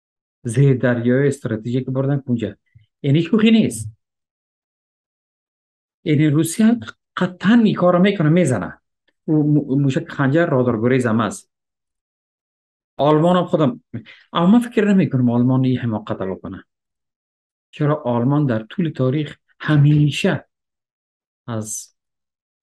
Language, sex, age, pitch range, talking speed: Persian, male, 50-69, 105-140 Hz, 110 wpm